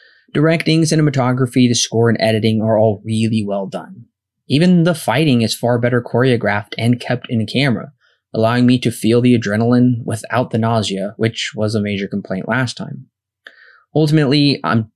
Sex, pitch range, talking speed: male, 110-135 Hz, 160 wpm